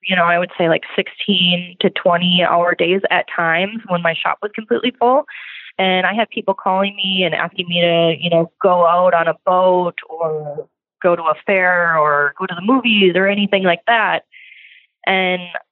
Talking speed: 195 wpm